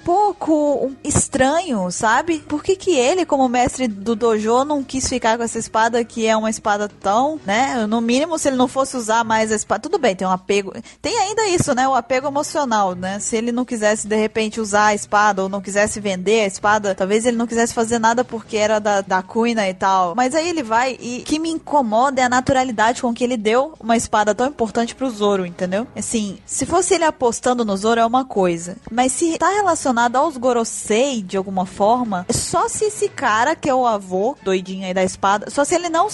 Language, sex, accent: Portuguese, female, Brazilian